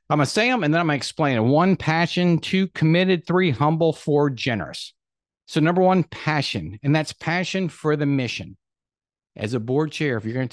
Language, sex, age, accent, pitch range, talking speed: English, male, 50-69, American, 110-155 Hz, 205 wpm